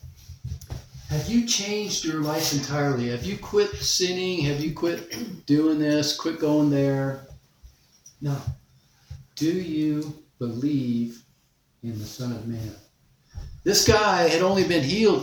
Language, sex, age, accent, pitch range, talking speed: English, male, 50-69, American, 130-180 Hz, 130 wpm